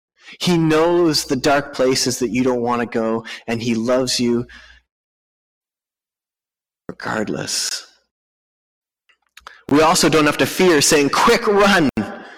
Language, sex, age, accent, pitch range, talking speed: English, male, 30-49, American, 125-170 Hz, 120 wpm